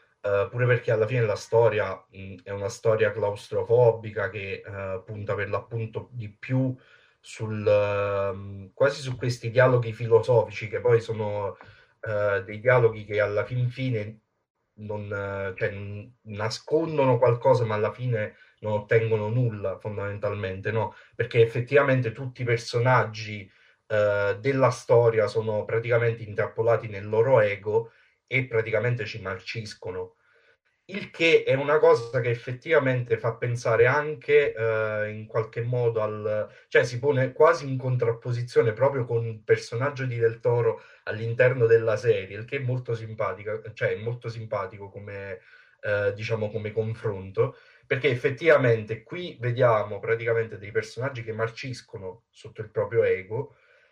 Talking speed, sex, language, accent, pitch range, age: 140 wpm, male, Italian, native, 105-140 Hz, 30-49